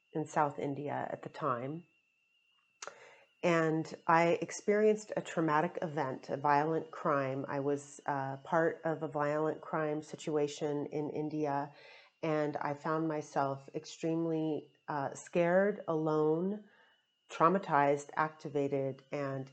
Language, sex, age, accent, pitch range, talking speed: English, female, 30-49, American, 145-165 Hz, 115 wpm